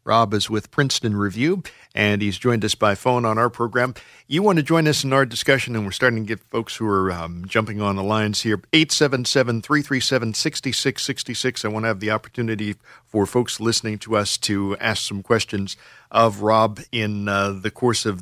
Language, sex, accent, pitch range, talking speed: English, male, American, 110-140 Hz, 195 wpm